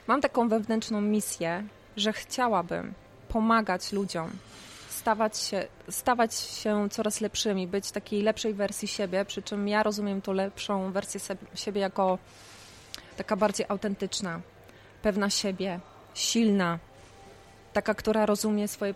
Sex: female